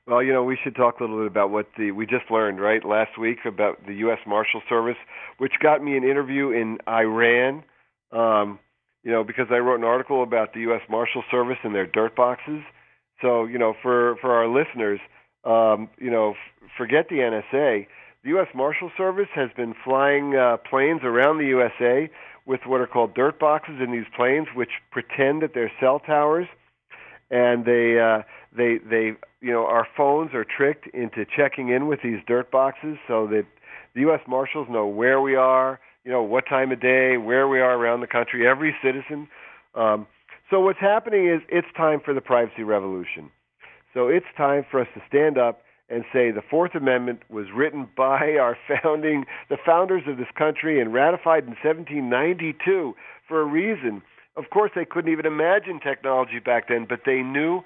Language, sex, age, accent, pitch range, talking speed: English, male, 40-59, American, 115-150 Hz, 190 wpm